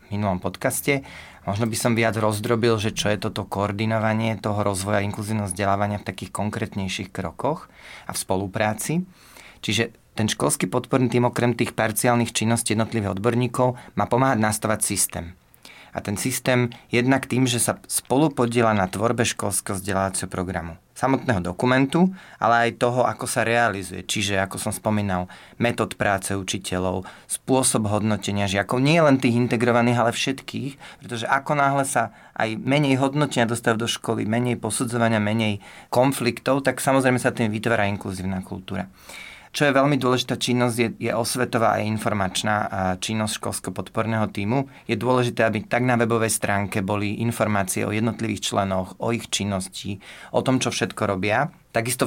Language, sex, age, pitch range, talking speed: Slovak, male, 30-49, 100-120 Hz, 150 wpm